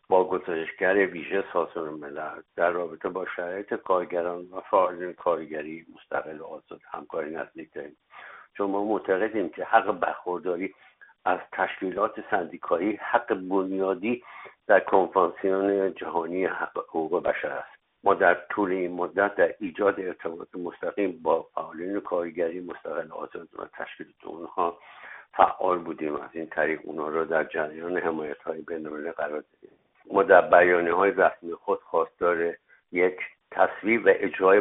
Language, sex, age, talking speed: Persian, male, 60-79, 135 wpm